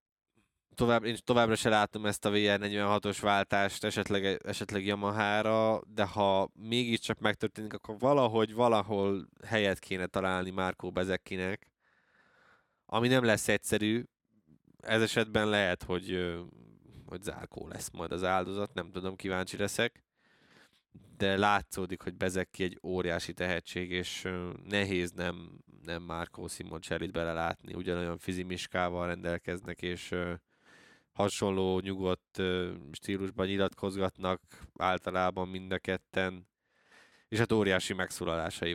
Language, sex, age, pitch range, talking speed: Hungarian, male, 20-39, 90-105 Hz, 110 wpm